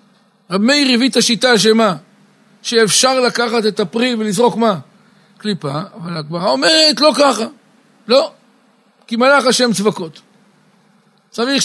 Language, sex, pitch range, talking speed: Hebrew, male, 200-235 Hz, 125 wpm